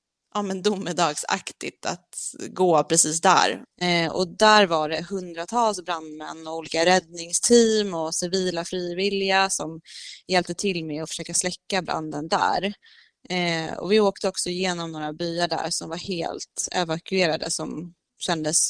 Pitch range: 165-195 Hz